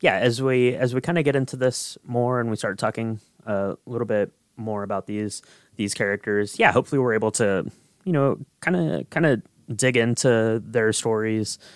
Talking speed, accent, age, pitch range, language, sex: 200 wpm, American, 20-39, 105-140 Hz, English, male